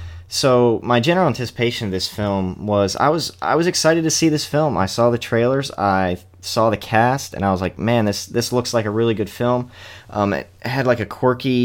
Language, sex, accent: English, male, American